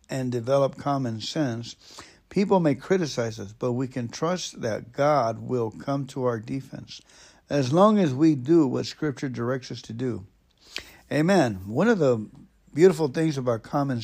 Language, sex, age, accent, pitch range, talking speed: English, male, 60-79, American, 120-150 Hz, 160 wpm